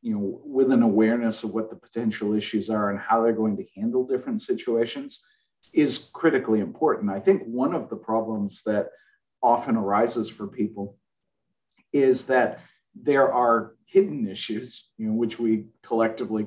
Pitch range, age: 105-125 Hz, 40-59